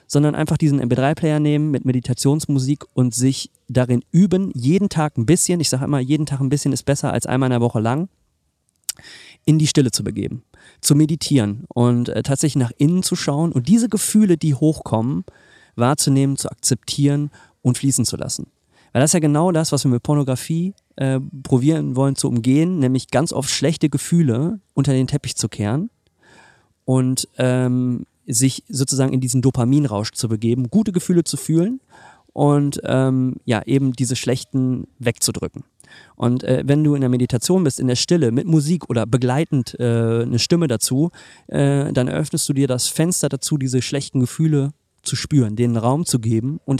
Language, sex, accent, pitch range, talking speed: German, male, German, 125-150 Hz, 180 wpm